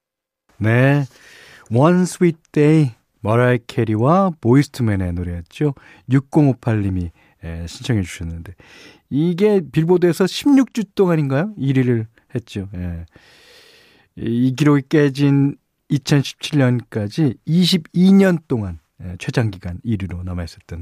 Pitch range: 105-155 Hz